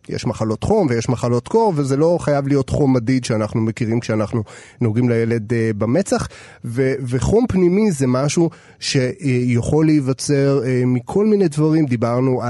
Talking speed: 155 wpm